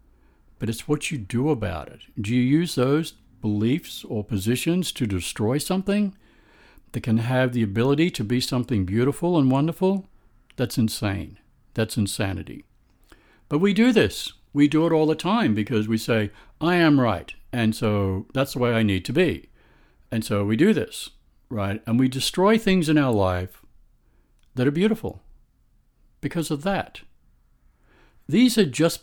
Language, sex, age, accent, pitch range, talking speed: English, male, 60-79, American, 105-150 Hz, 165 wpm